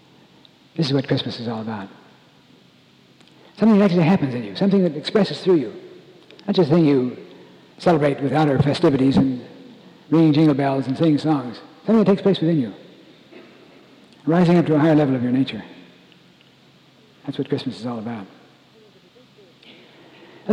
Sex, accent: male, American